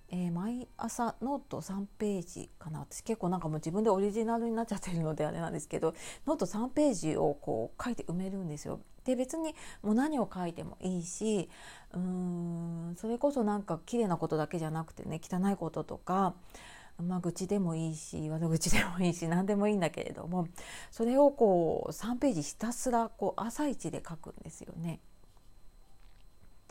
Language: Japanese